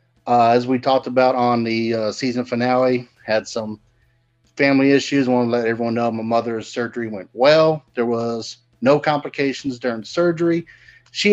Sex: male